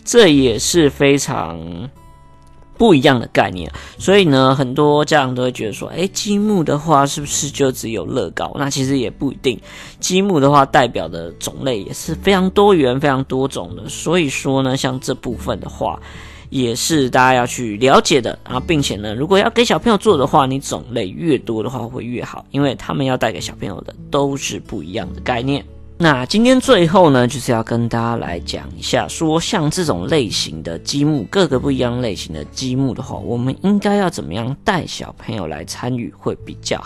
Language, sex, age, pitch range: Chinese, female, 20-39, 115-160 Hz